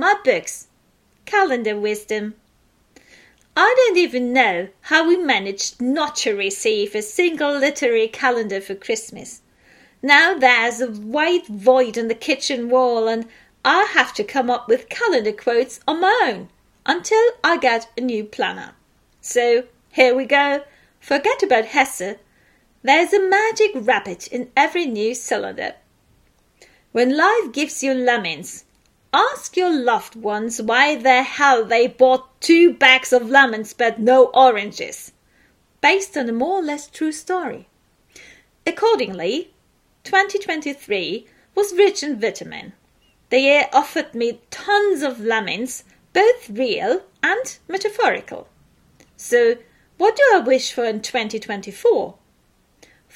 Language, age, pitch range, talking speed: German, 40-59, 240-385 Hz, 130 wpm